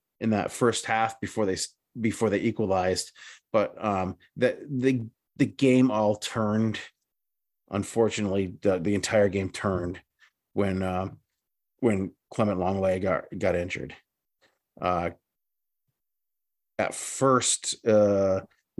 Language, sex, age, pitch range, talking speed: English, male, 30-49, 95-115 Hz, 110 wpm